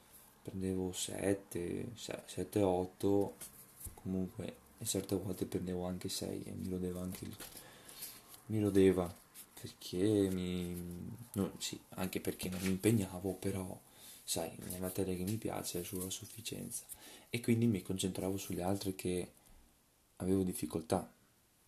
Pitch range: 90-105 Hz